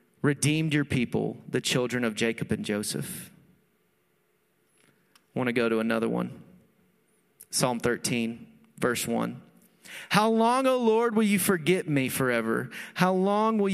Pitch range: 135-205 Hz